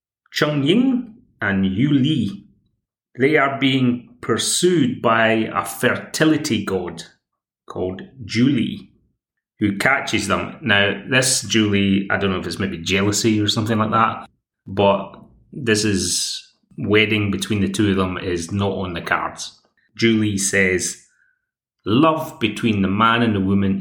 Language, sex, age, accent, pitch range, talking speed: English, male, 30-49, British, 95-120 Hz, 140 wpm